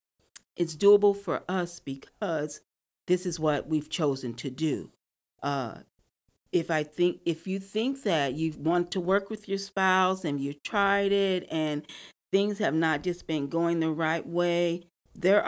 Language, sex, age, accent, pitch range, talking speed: English, female, 40-59, American, 150-195 Hz, 165 wpm